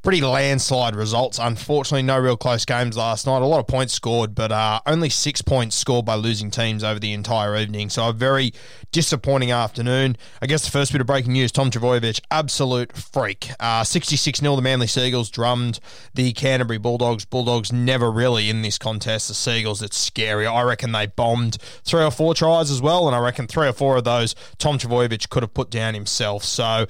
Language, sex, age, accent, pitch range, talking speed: English, male, 20-39, Australian, 110-130 Hz, 205 wpm